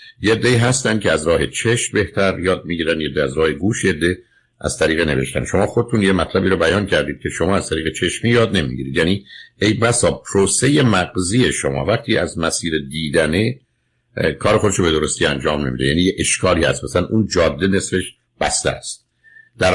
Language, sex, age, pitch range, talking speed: Persian, male, 60-79, 85-110 Hz, 165 wpm